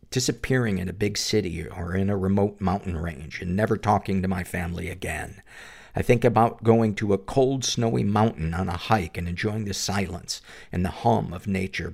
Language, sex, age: English, male, 50-69